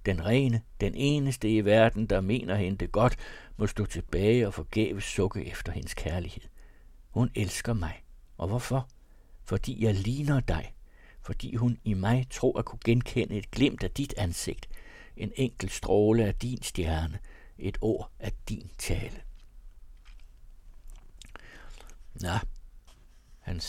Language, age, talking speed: Danish, 60-79, 140 wpm